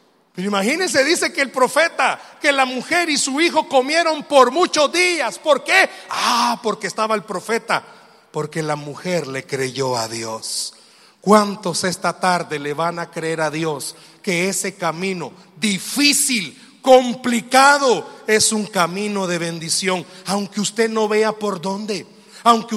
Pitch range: 150-215 Hz